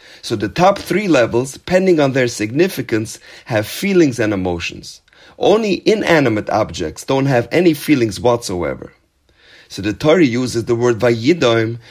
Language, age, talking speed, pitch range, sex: English, 30-49, 140 wpm, 115-170 Hz, male